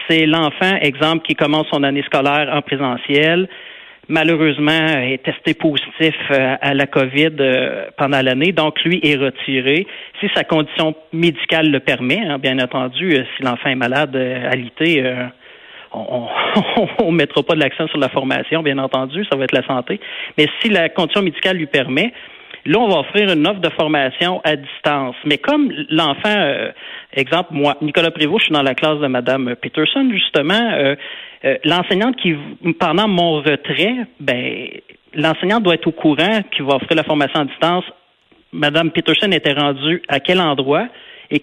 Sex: male